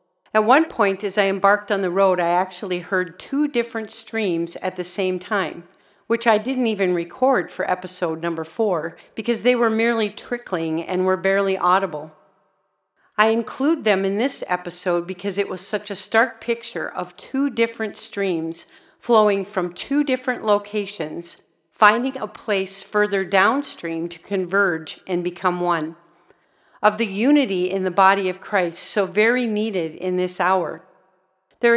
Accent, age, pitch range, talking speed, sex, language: American, 50-69, 180-225 Hz, 160 wpm, female, English